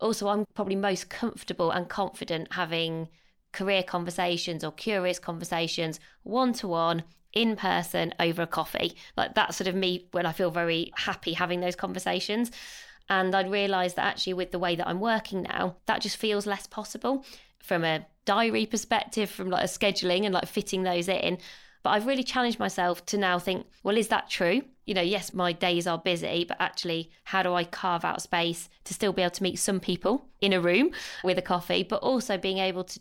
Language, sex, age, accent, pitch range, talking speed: English, female, 20-39, British, 180-210 Hz, 200 wpm